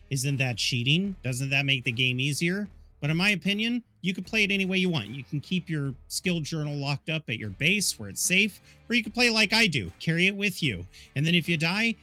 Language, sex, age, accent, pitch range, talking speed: English, male, 40-59, American, 120-180 Hz, 260 wpm